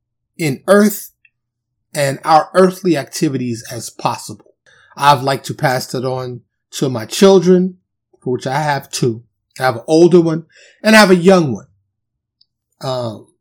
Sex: male